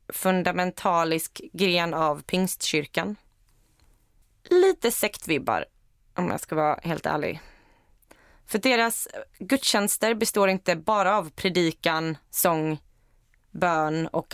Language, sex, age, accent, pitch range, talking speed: Swedish, female, 20-39, native, 160-210 Hz, 95 wpm